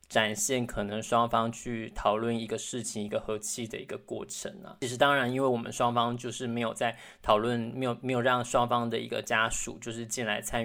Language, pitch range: Chinese, 115-135 Hz